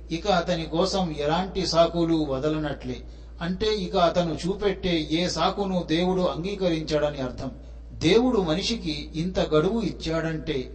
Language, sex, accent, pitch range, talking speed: Telugu, male, native, 150-185 Hz, 110 wpm